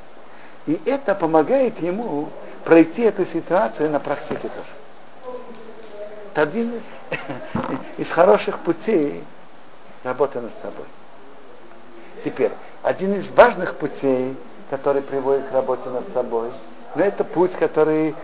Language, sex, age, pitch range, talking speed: Russian, male, 60-79, 135-190 Hz, 110 wpm